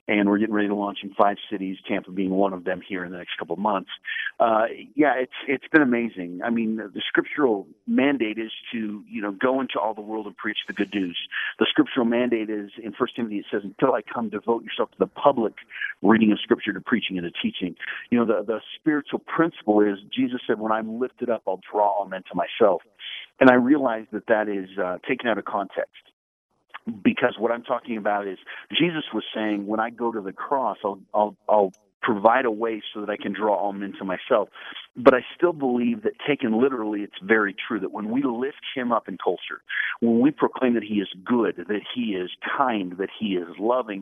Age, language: 50-69, English